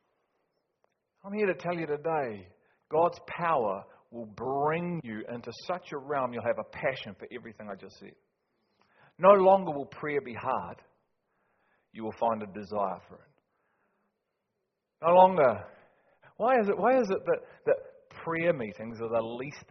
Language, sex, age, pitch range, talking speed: English, male, 40-59, 115-180 Hz, 160 wpm